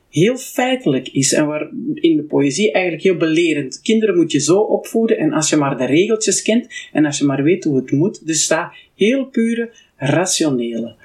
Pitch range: 145-230 Hz